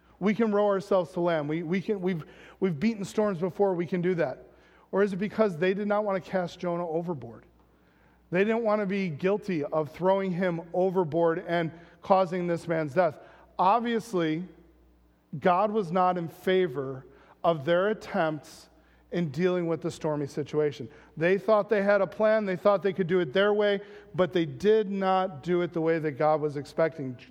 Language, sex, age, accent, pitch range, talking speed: English, male, 40-59, American, 155-190 Hz, 190 wpm